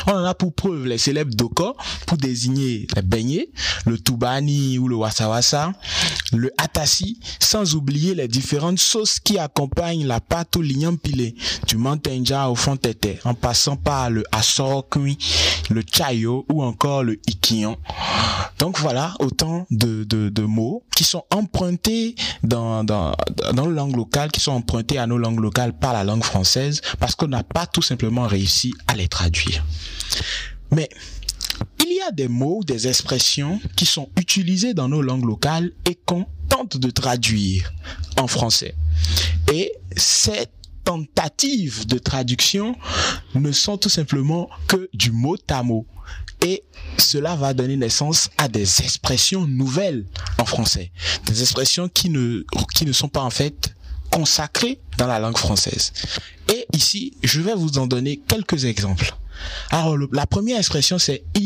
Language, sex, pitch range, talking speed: French, male, 110-160 Hz, 155 wpm